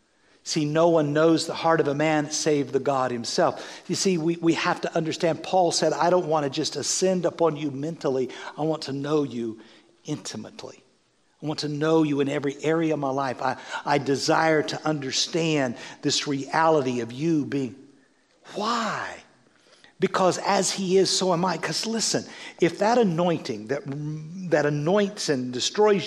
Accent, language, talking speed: American, English, 175 wpm